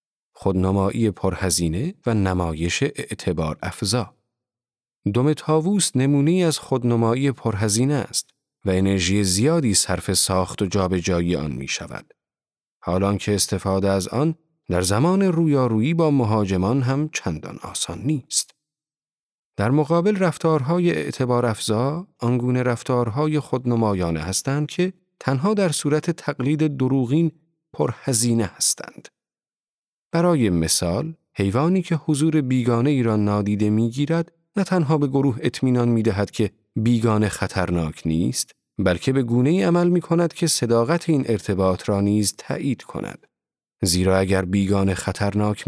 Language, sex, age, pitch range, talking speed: Persian, male, 40-59, 100-150 Hz, 120 wpm